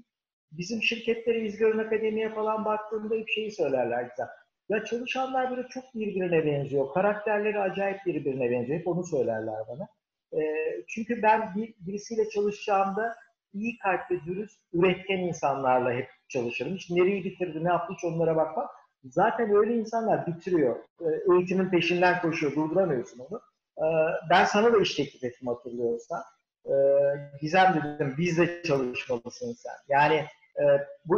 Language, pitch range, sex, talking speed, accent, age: Turkish, 155-220 Hz, male, 140 wpm, native, 50-69